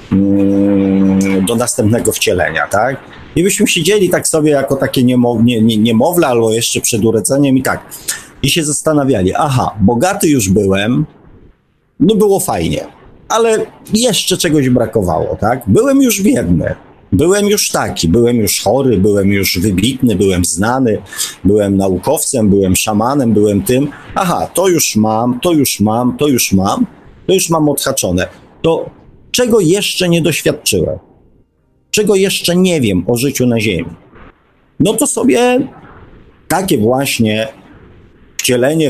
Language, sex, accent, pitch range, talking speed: Polish, male, native, 100-165 Hz, 140 wpm